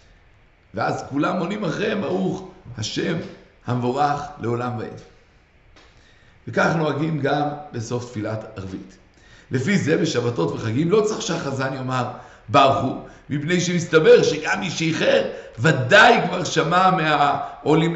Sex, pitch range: male, 120-180 Hz